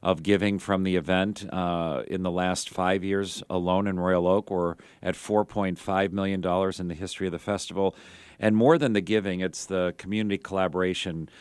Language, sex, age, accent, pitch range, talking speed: English, male, 40-59, American, 90-105 Hz, 180 wpm